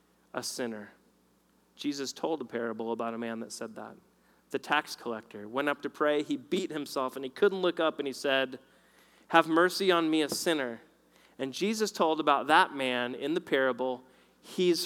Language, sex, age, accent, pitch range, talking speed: English, male, 30-49, American, 115-175 Hz, 185 wpm